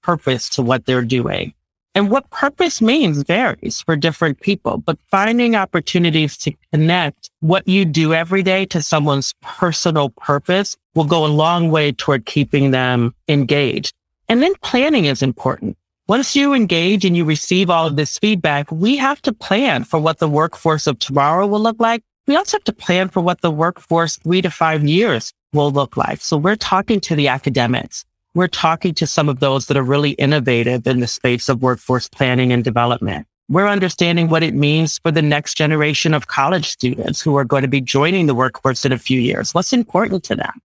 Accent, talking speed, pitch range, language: American, 195 wpm, 135-180 Hz, English